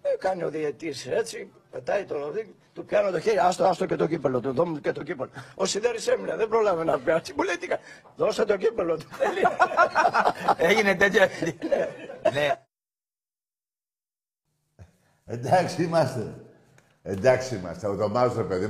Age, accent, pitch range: 60-79, Spanish, 125-175 Hz